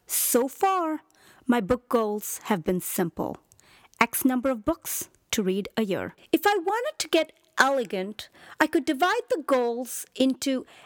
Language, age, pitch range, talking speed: English, 40-59, 235-325 Hz, 155 wpm